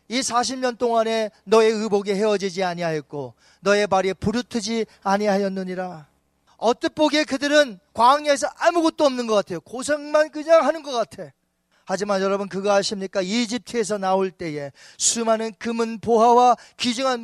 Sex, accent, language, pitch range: male, native, Korean, 195-260 Hz